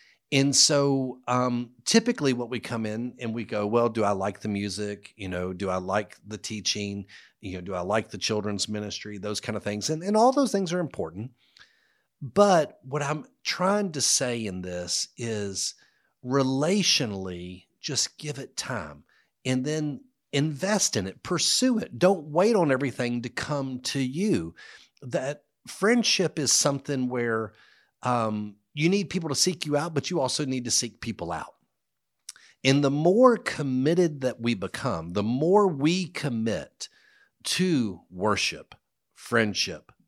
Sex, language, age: male, English, 50-69